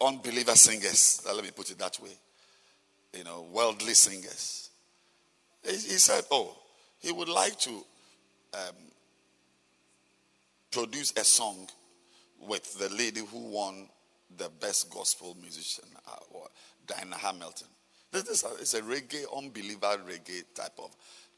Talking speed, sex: 130 wpm, male